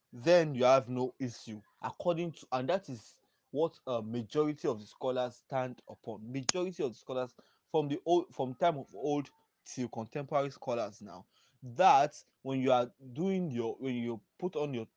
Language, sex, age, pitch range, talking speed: English, male, 20-39, 120-150 Hz, 170 wpm